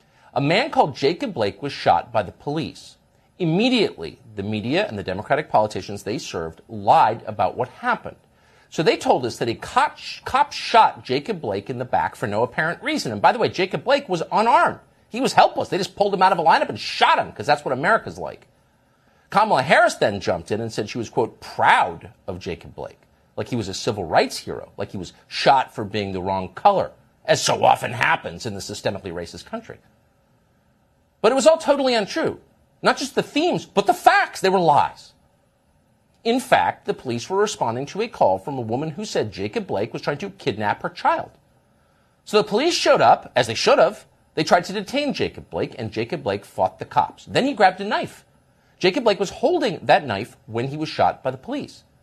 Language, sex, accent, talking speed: English, male, American, 210 wpm